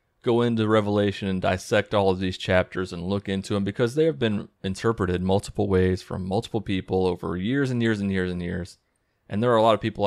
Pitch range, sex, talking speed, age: 95-125 Hz, male, 225 wpm, 30-49